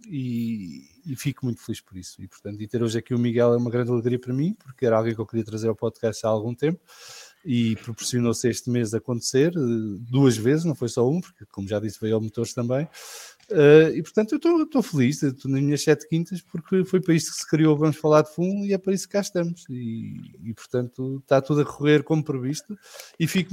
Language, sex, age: English, male, 20-39